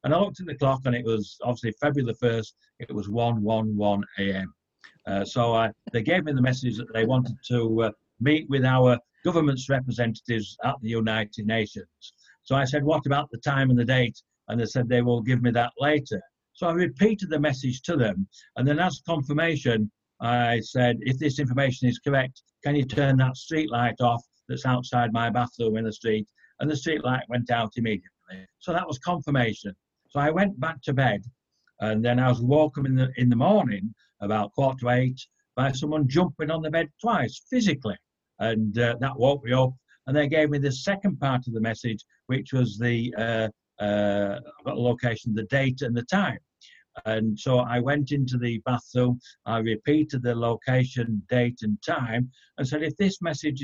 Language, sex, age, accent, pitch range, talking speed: English, male, 60-79, British, 115-145 Hz, 195 wpm